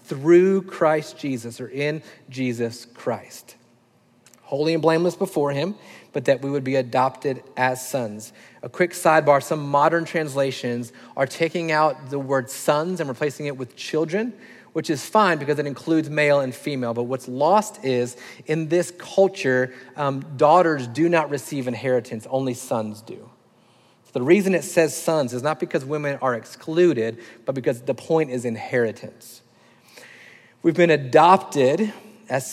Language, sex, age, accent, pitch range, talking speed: English, male, 30-49, American, 125-170 Hz, 155 wpm